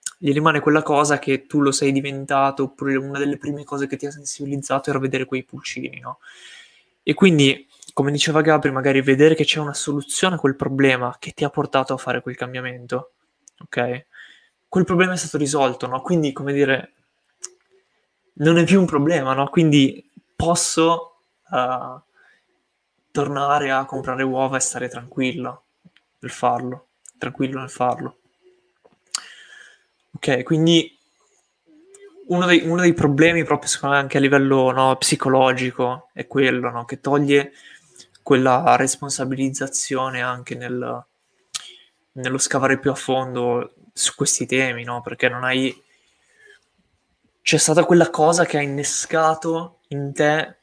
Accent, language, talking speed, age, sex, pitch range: native, Italian, 140 wpm, 20-39, male, 130-155 Hz